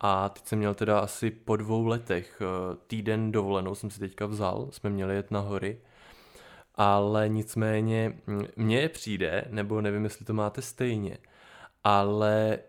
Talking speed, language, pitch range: 150 wpm, Czech, 105-115 Hz